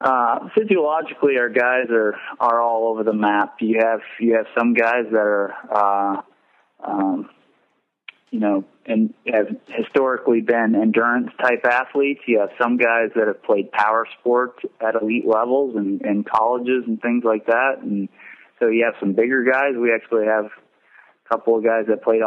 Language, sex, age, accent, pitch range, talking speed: English, male, 20-39, American, 100-120 Hz, 170 wpm